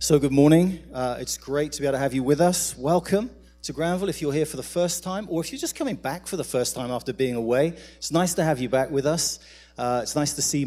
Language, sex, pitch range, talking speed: English, male, 115-150 Hz, 280 wpm